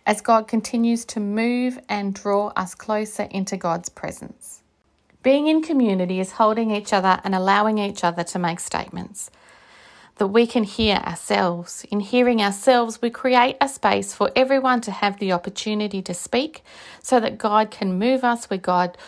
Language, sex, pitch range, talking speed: English, female, 185-225 Hz, 170 wpm